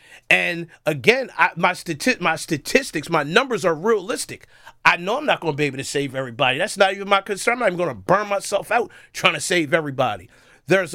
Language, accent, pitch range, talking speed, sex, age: English, American, 165-235 Hz, 220 wpm, male, 30-49